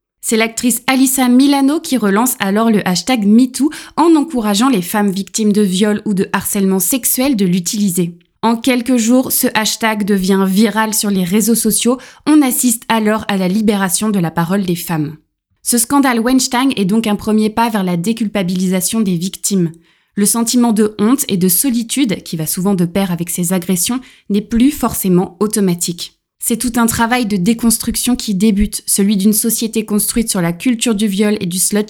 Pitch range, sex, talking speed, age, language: 195-235 Hz, female, 180 wpm, 20-39, French